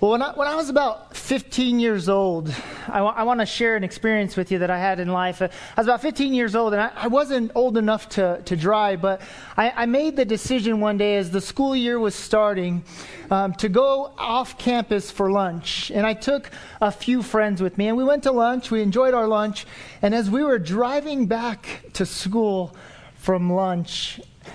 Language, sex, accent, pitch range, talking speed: English, male, American, 180-225 Hz, 210 wpm